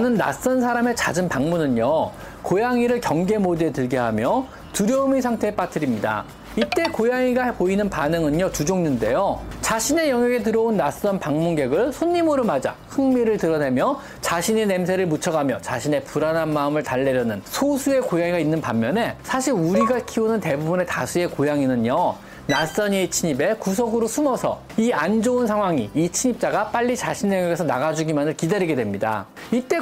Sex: male